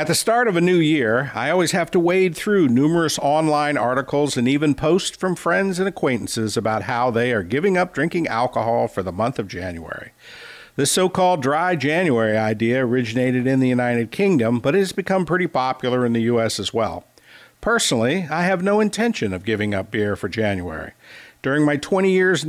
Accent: American